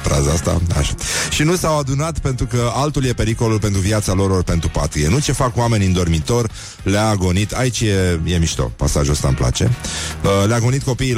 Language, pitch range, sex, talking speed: Romanian, 90-115 Hz, male, 195 wpm